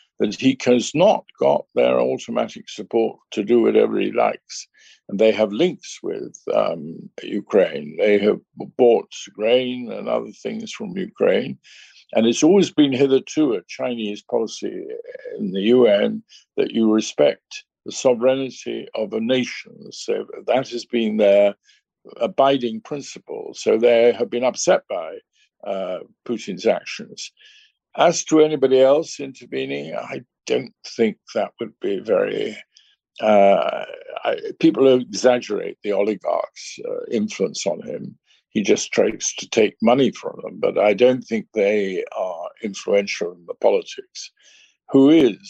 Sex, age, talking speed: male, 50-69, 140 wpm